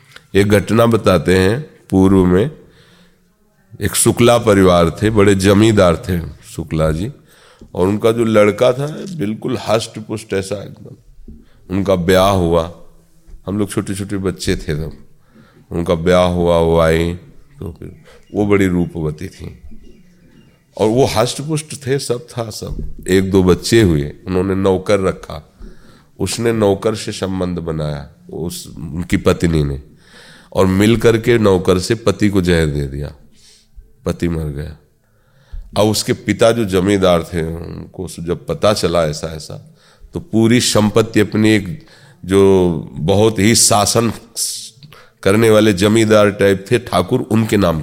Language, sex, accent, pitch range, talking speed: Hindi, male, native, 90-115 Hz, 140 wpm